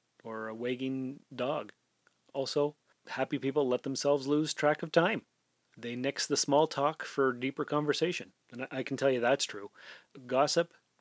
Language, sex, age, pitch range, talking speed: English, male, 30-49, 120-145 Hz, 160 wpm